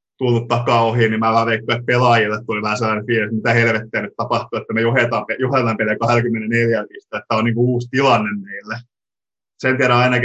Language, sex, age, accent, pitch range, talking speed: Finnish, male, 20-39, native, 110-120 Hz, 195 wpm